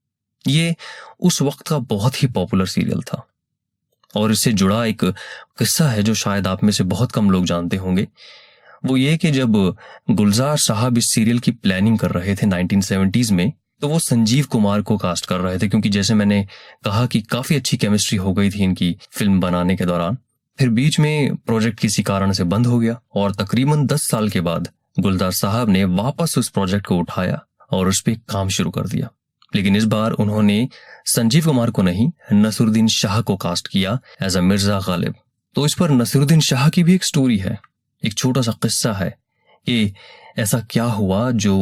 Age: 20-39